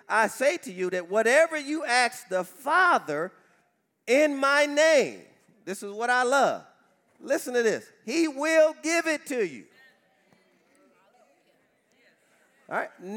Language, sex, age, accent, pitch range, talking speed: English, male, 40-59, American, 190-250 Hz, 130 wpm